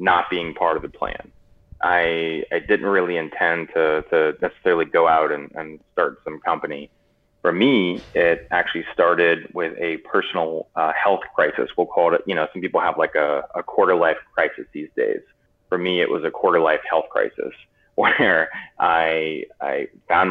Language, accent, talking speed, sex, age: English, American, 175 wpm, male, 20-39